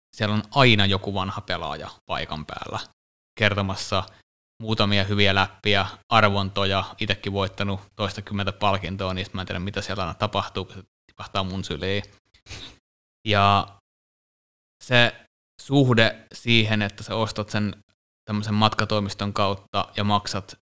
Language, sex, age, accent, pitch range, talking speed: Finnish, male, 20-39, native, 95-110 Hz, 120 wpm